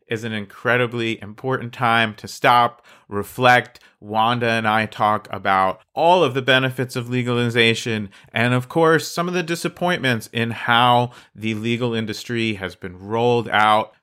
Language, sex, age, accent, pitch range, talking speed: English, male, 30-49, American, 110-150 Hz, 150 wpm